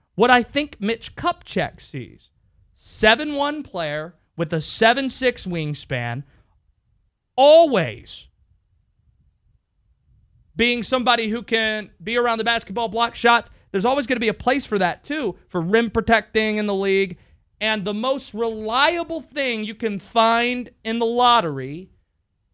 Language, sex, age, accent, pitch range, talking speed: English, male, 30-49, American, 170-235 Hz, 140 wpm